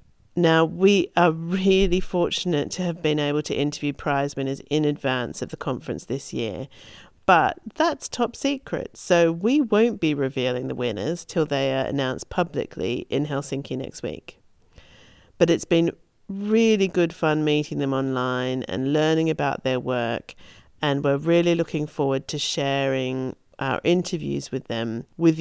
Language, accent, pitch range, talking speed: English, British, 135-170 Hz, 155 wpm